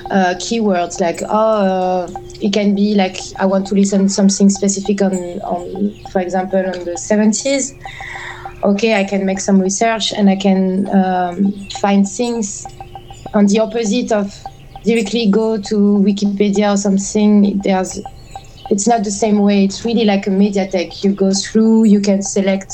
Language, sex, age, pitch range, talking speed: English, female, 20-39, 180-205 Hz, 160 wpm